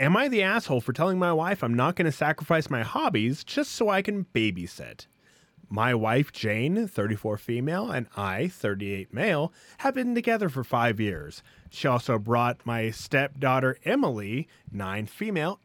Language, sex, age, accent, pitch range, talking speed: English, male, 20-39, American, 115-165 Hz, 165 wpm